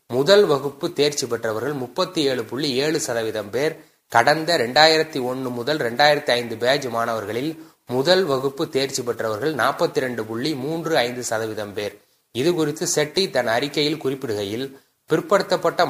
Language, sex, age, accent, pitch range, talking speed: Tamil, male, 30-49, native, 120-155 Hz, 125 wpm